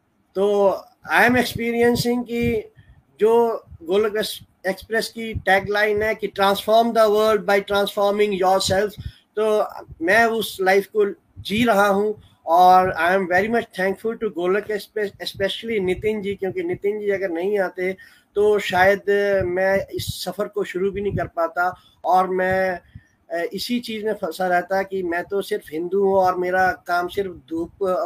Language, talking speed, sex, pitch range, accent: Hindi, 155 wpm, male, 170-210 Hz, native